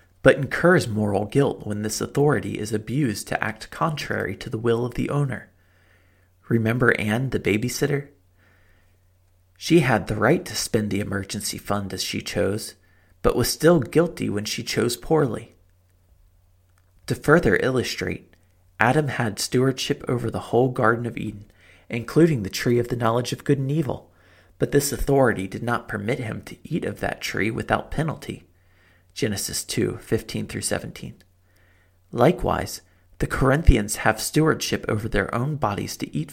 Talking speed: 155 wpm